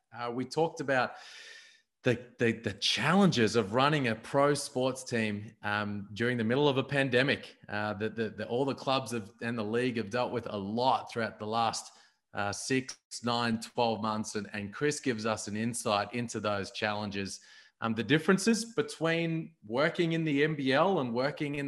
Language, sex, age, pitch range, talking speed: English, male, 30-49, 110-140 Hz, 185 wpm